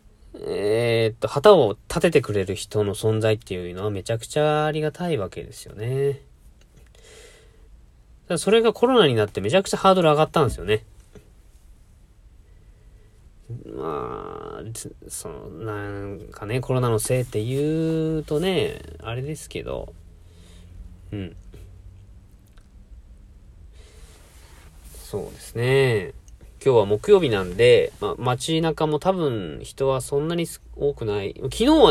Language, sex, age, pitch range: Japanese, male, 40-59, 100-165 Hz